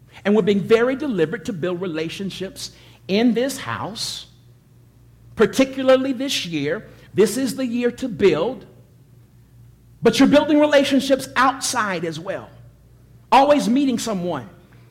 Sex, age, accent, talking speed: male, 50-69, American, 120 wpm